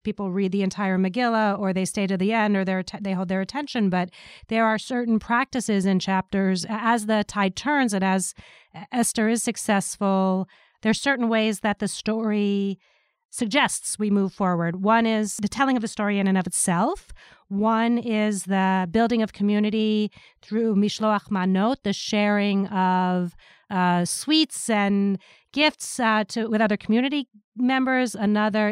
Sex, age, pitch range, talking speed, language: female, 30-49, 195-235 Hz, 160 wpm, English